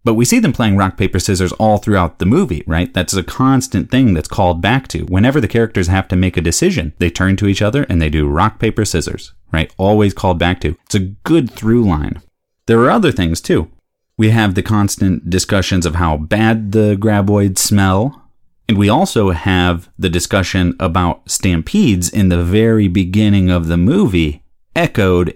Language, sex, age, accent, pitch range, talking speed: English, male, 30-49, American, 85-110 Hz, 185 wpm